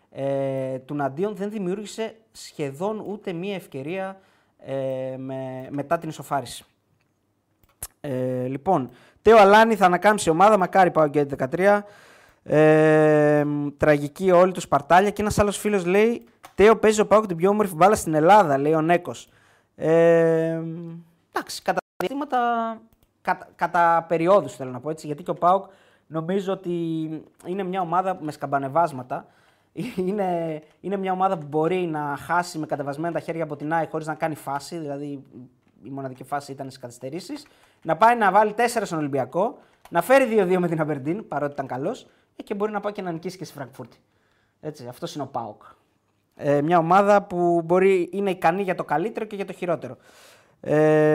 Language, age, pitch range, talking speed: Greek, 20-39, 145-195 Hz, 160 wpm